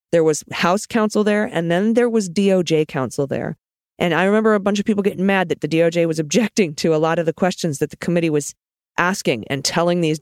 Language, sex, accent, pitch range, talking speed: English, female, American, 140-175 Hz, 235 wpm